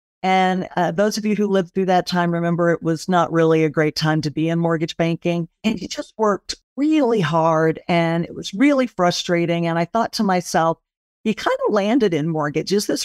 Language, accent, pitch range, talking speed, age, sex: English, American, 170-215 Hz, 215 wpm, 50-69, female